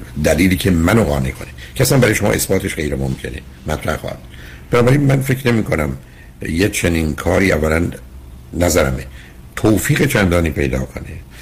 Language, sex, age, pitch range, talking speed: Persian, male, 60-79, 70-90 Hz, 130 wpm